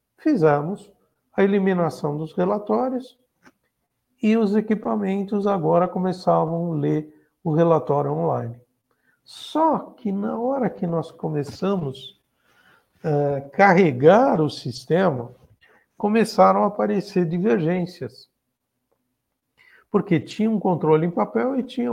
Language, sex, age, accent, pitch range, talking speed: Portuguese, male, 60-79, Brazilian, 150-200 Hz, 105 wpm